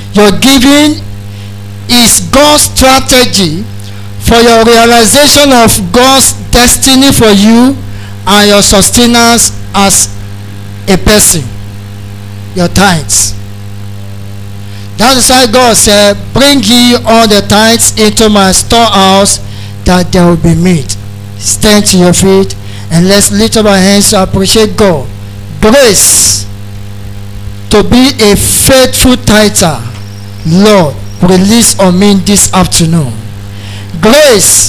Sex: male